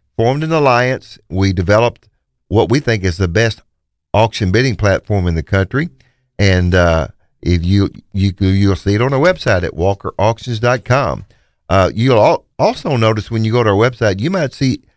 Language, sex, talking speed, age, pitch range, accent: English, male, 170 wpm, 50-69, 95-120 Hz, American